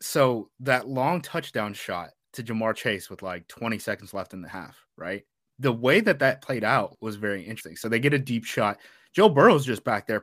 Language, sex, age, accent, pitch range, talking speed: English, male, 20-39, American, 110-150 Hz, 215 wpm